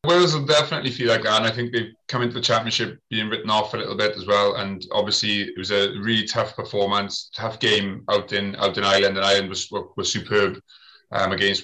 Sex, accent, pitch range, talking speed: male, British, 100-115 Hz, 230 wpm